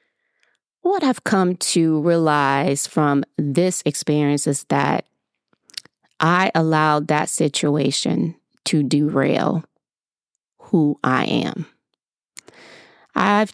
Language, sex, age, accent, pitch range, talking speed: English, female, 30-49, American, 150-185 Hz, 90 wpm